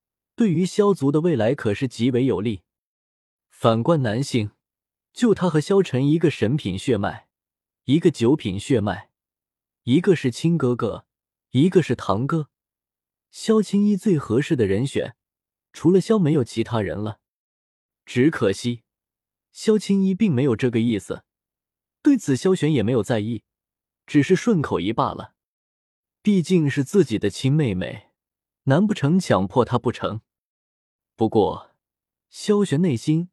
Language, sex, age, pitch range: Chinese, male, 20-39, 110-175 Hz